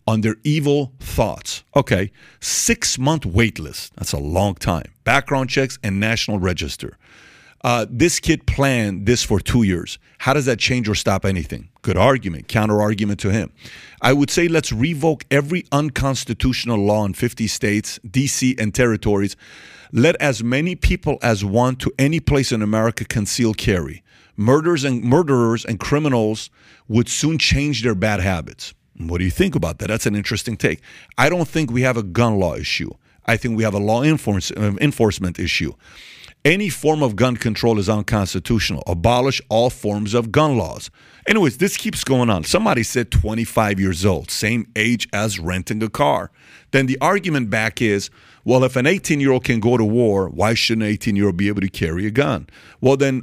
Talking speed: 180 wpm